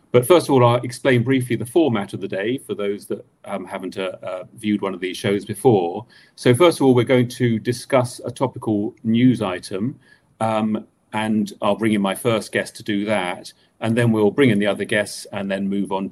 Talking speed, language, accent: 225 wpm, English, British